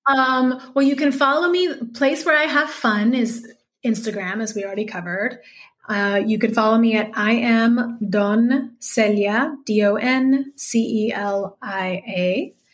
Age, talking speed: 30-49, 135 wpm